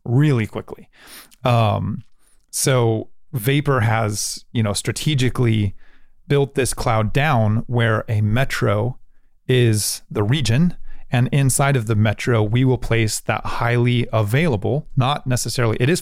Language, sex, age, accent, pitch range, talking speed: English, male, 30-49, American, 105-125 Hz, 125 wpm